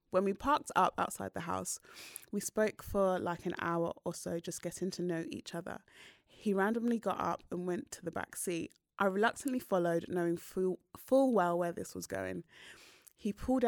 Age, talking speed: 20-39, 195 wpm